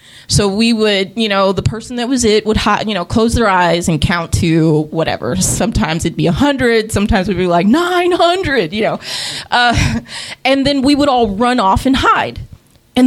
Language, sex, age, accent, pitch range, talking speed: English, female, 20-39, American, 175-235 Hz, 200 wpm